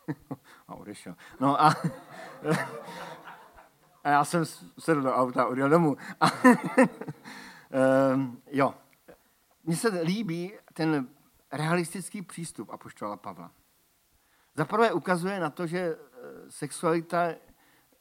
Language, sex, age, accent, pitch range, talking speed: Czech, male, 50-69, native, 130-165 Hz, 95 wpm